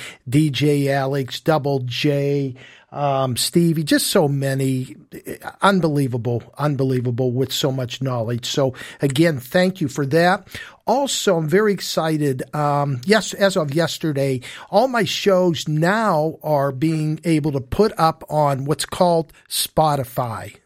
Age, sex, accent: 50-69, male, American